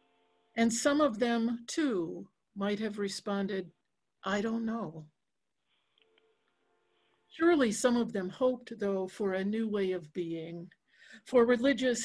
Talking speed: 125 wpm